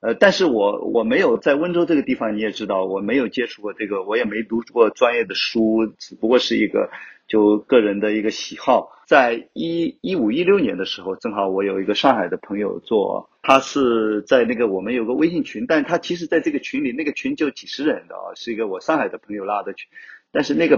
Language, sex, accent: Chinese, male, native